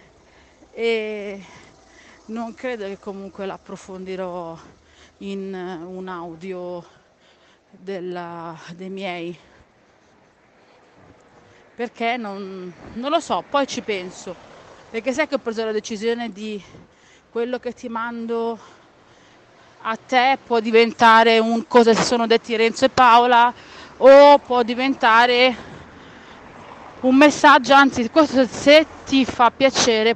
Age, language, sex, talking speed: 30-49, Italian, female, 110 wpm